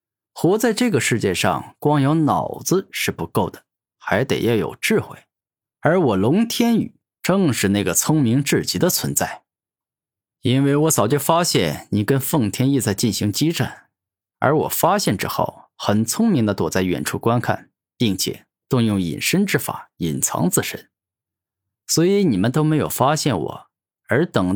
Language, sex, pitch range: Chinese, male, 105-160 Hz